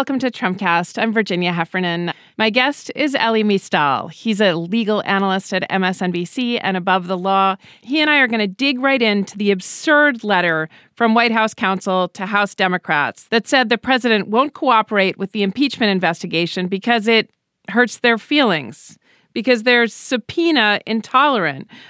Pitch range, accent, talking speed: 195-250 Hz, American, 160 wpm